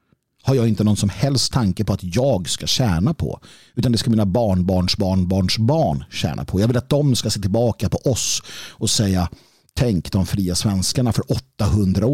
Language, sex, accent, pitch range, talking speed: Swedish, male, native, 95-130 Hz, 200 wpm